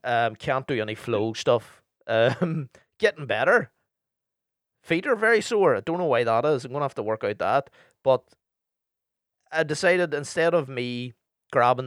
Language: English